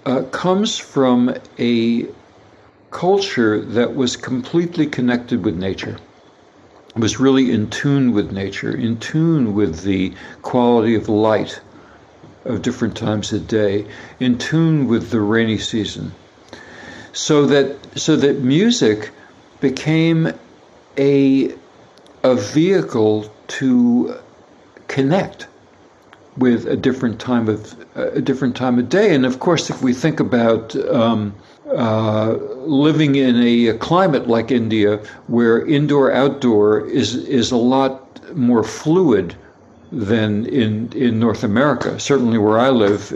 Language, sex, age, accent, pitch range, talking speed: English, male, 60-79, American, 110-135 Hz, 125 wpm